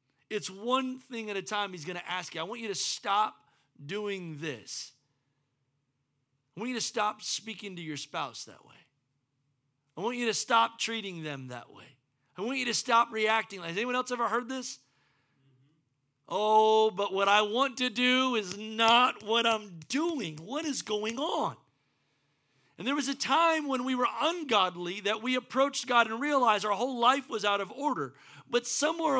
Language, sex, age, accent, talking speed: English, male, 40-59, American, 185 wpm